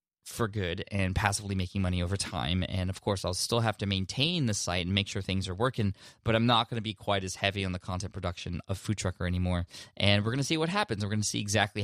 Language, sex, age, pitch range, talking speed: English, male, 20-39, 95-110 Hz, 270 wpm